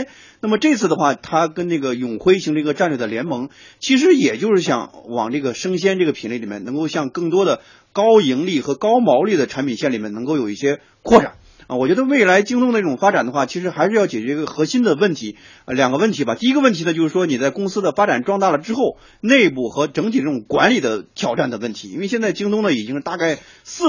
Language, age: Chinese, 30-49